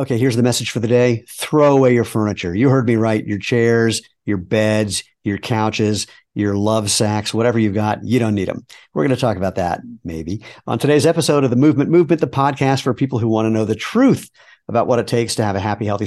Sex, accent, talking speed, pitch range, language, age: male, American, 240 wpm, 100-125 Hz, English, 50-69